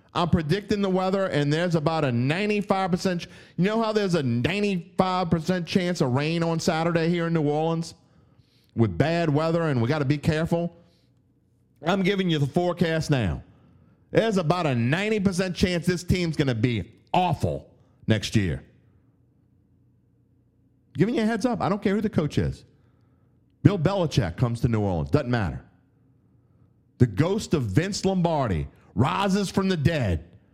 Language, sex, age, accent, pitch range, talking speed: English, male, 40-59, American, 120-175 Hz, 160 wpm